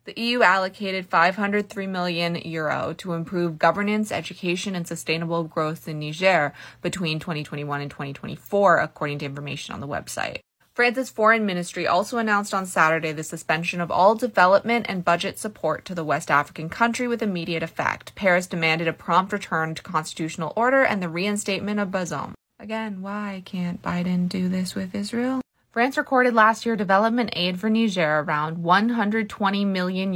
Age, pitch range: 20-39, 155-195 Hz